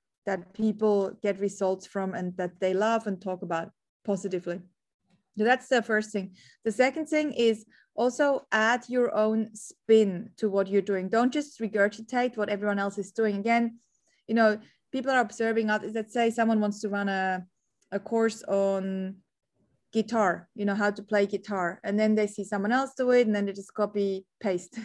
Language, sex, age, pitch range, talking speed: English, female, 20-39, 200-230 Hz, 185 wpm